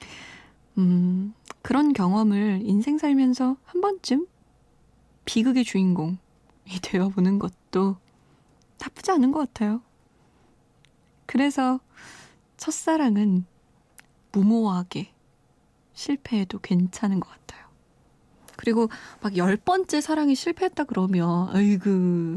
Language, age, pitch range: Korean, 20-39, 185-260 Hz